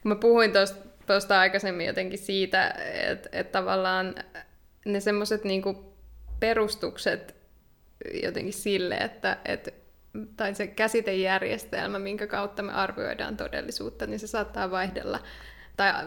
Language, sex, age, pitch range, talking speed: Finnish, female, 20-39, 195-220 Hz, 105 wpm